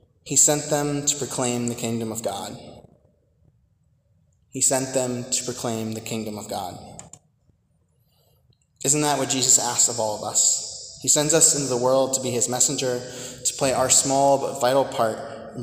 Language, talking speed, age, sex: English, 175 wpm, 20-39, male